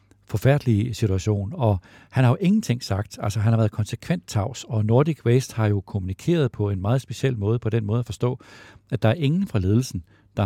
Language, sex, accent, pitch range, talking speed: Danish, male, native, 100-120 Hz, 210 wpm